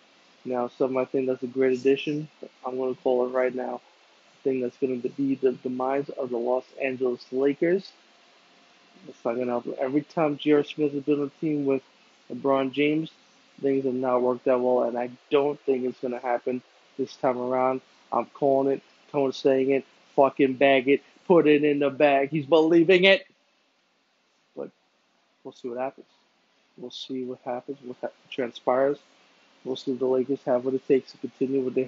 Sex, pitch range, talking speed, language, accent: male, 130-140 Hz, 180 wpm, English, American